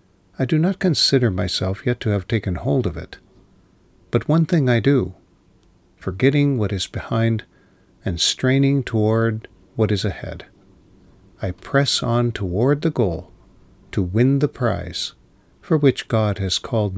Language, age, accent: English, 50-69, American